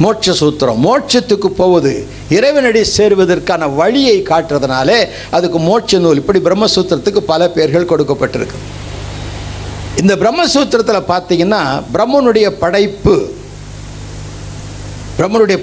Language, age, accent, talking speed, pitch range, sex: Tamil, 60-79, native, 80 wpm, 140-220 Hz, male